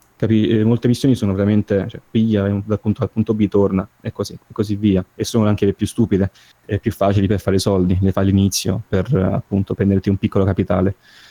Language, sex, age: Italian, male, 20-39